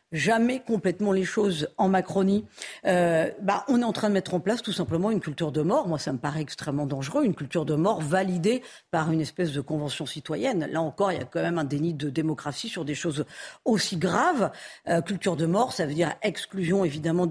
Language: French